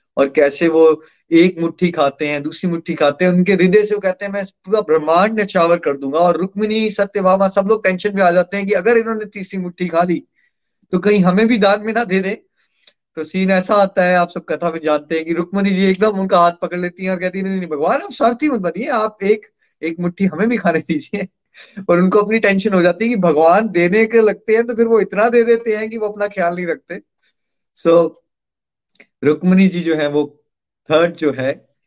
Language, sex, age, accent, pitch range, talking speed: Hindi, male, 30-49, native, 150-205 Hz, 230 wpm